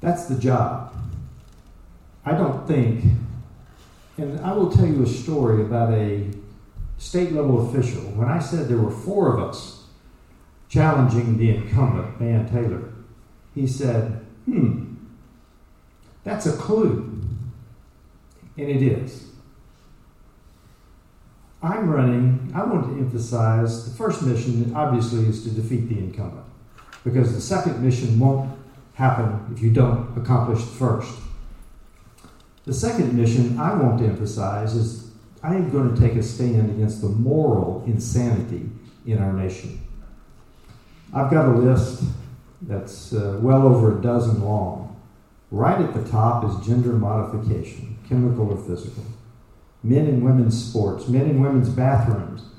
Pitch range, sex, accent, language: 110-130 Hz, male, American, English